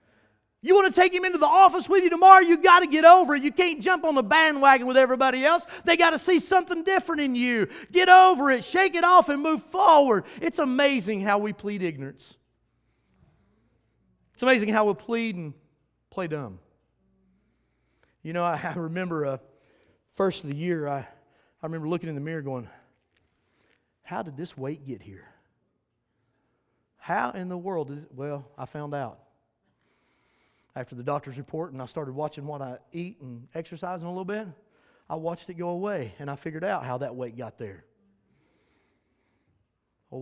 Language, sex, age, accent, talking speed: English, male, 40-59, American, 185 wpm